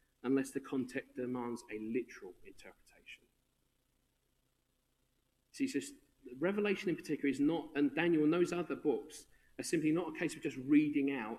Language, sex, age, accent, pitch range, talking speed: English, male, 40-59, British, 120-155 Hz, 155 wpm